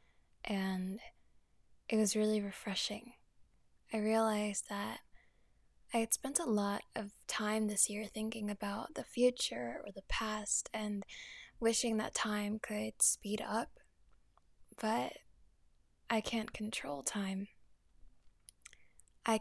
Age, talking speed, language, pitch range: 10-29, 115 wpm, English, 215-240 Hz